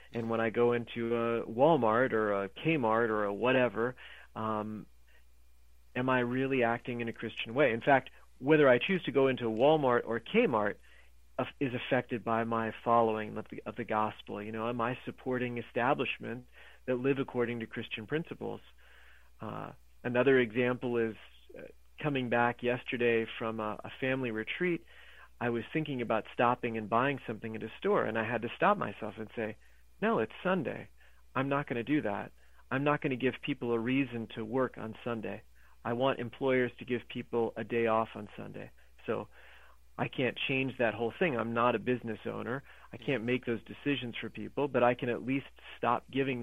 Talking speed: 185 wpm